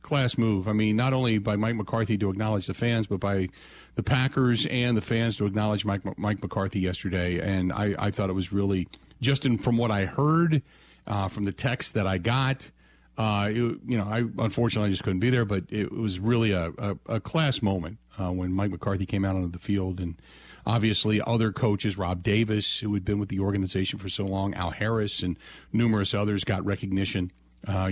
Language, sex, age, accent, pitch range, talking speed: English, male, 40-59, American, 95-125 Hz, 200 wpm